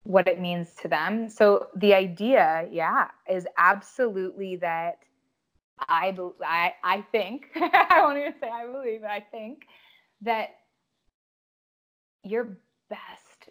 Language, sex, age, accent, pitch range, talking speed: English, female, 20-39, American, 175-220 Hz, 125 wpm